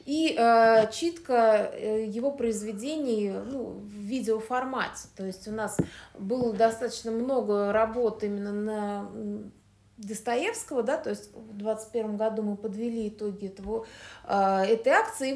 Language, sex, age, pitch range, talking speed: Russian, female, 30-49, 220-275 Hz, 130 wpm